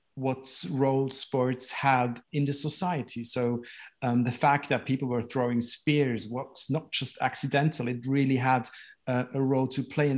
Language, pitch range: English, 120-140 Hz